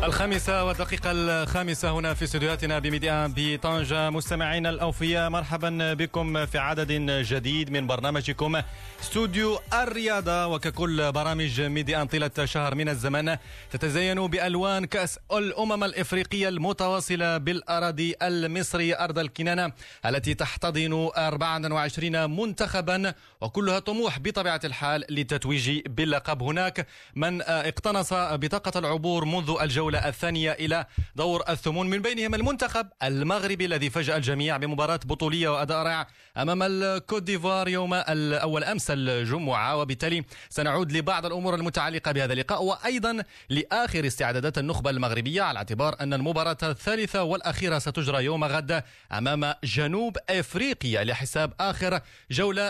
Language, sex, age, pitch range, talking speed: Arabic, male, 40-59, 150-185 Hz, 115 wpm